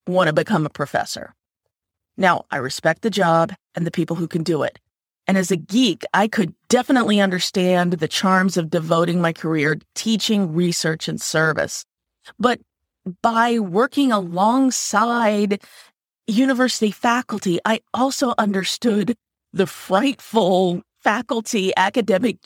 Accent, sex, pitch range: American, female, 170-235 Hz